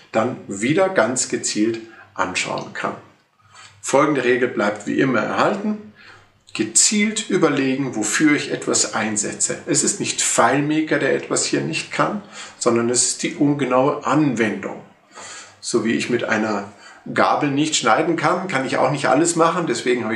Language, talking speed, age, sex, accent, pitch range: German, 150 wpm, 50-69, male, German, 110-155 Hz